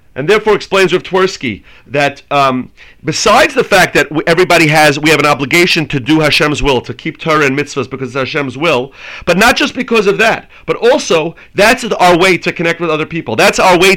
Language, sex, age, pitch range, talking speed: English, male, 40-59, 145-190 Hz, 210 wpm